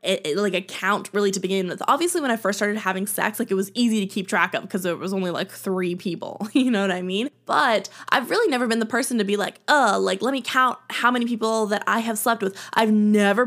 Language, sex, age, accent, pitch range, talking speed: English, female, 10-29, American, 195-240 Hz, 265 wpm